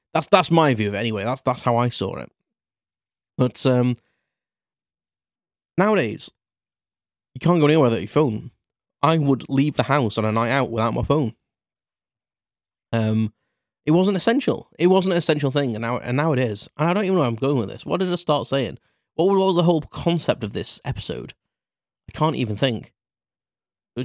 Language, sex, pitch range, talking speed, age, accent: English, male, 115-140 Hz, 195 wpm, 20-39, British